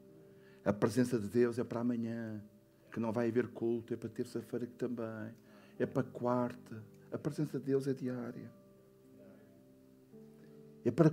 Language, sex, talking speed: Portuguese, male, 150 wpm